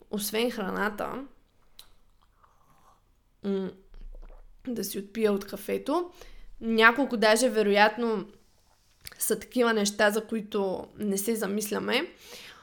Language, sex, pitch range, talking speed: Bulgarian, female, 210-245 Hz, 85 wpm